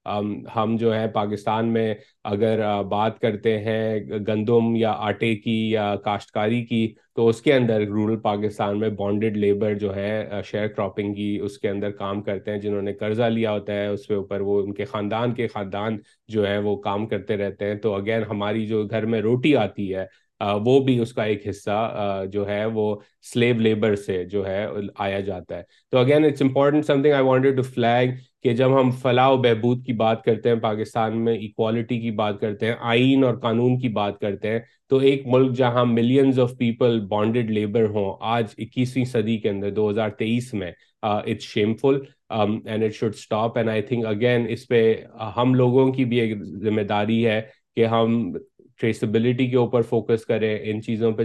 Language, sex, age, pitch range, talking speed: Urdu, male, 30-49, 105-120 Hz, 190 wpm